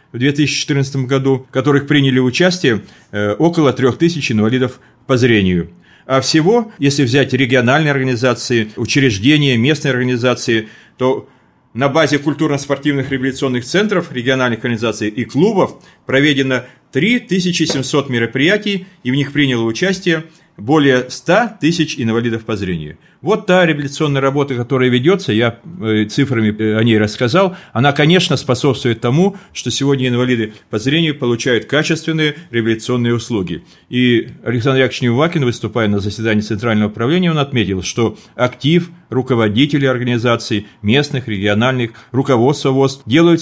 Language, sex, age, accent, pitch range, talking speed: Russian, male, 30-49, native, 115-145 Hz, 120 wpm